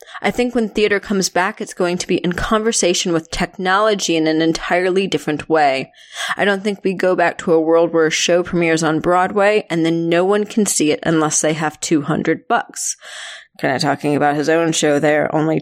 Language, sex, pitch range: English, female, 155-200 Hz